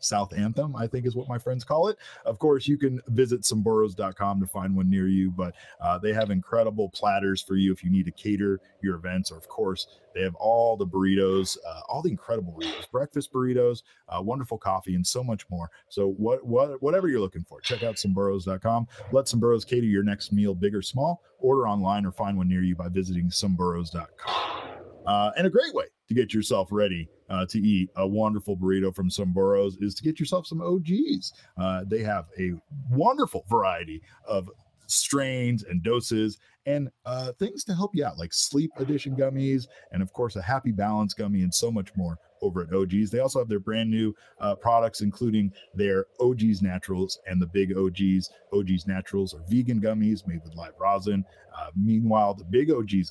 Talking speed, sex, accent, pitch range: 200 wpm, male, American, 95-115 Hz